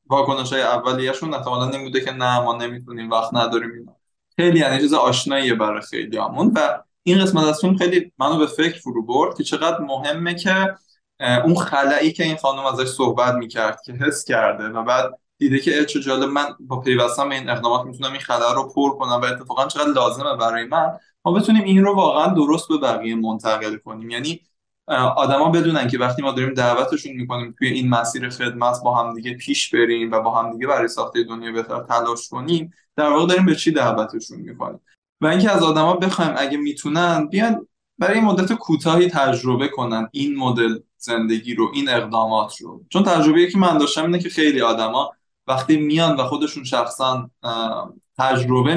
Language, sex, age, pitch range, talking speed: Persian, male, 20-39, 120-160 Hz, 185 wpm